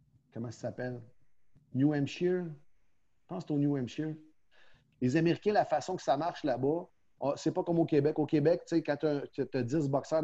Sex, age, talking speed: male, 40-59, 190 wpm